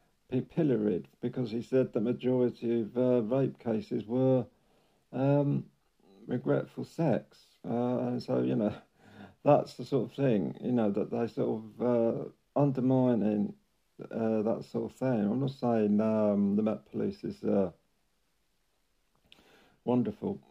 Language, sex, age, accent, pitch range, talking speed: English, male, 50-69, British, 115-130 Hz, 140 wpm